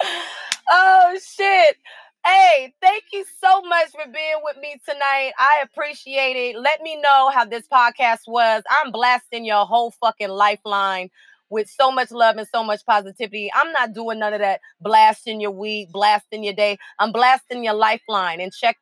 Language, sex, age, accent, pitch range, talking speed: English, female, 30-49, American, 215-280 Hz, 170 wpm